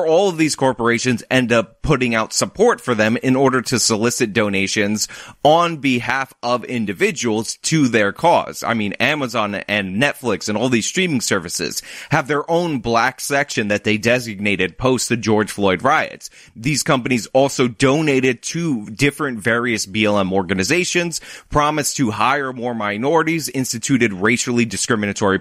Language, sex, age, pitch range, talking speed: English, male, 20-39, 110-150 Hz, 150 wpm